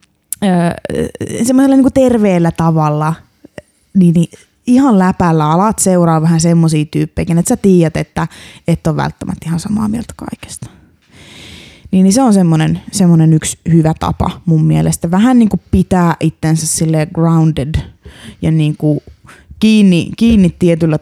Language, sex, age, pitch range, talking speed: Finnish, female, 20-39, 155-185 Hz, 130 wpm